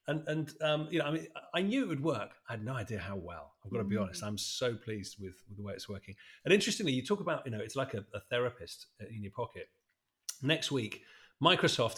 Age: 40-59